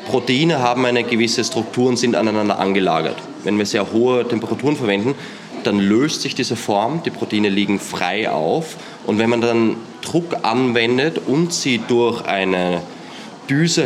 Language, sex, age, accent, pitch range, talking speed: German, male, 20-39, German, 100-125 Hz, 155 wpm